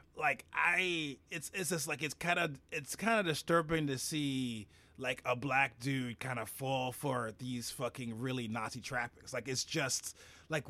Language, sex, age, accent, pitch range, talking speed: English, male, 30-49, American, 130-165 Hz, 180 wpm